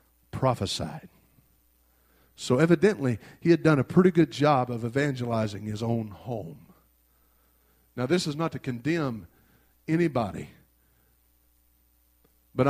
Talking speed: 110 wpm